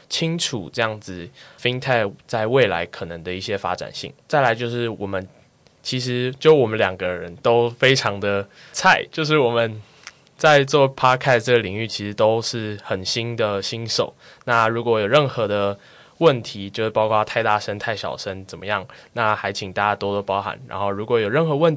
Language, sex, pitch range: Chinese, male, 105-130 Hz